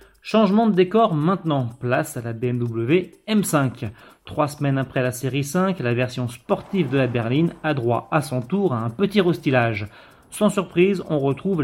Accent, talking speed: French, 175 wpm